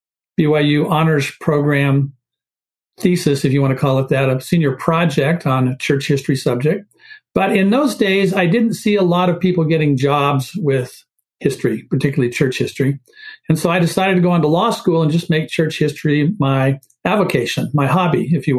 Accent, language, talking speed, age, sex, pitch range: American, English, 185 wpm, 50-69, male, 145-185 Hz